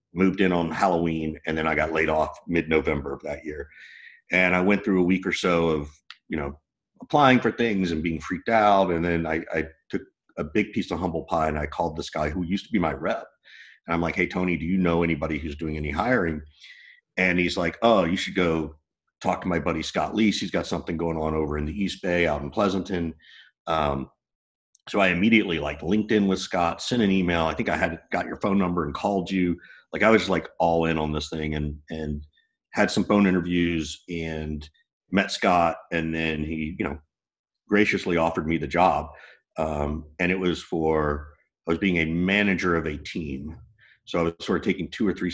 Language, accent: English, American